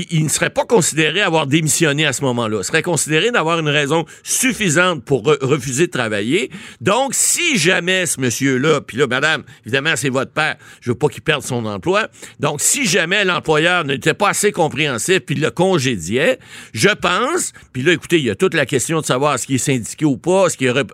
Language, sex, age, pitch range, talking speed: French, male, 60-79, 125-165 Hz, 215 wpm